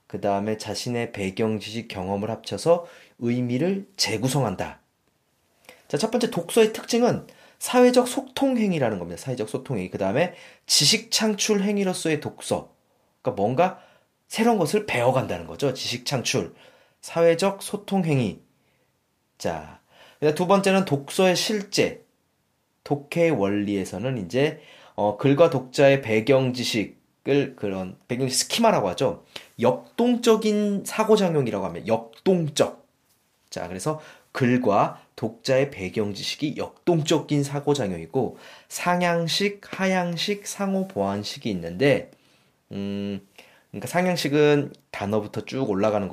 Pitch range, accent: 110-185 Hz, native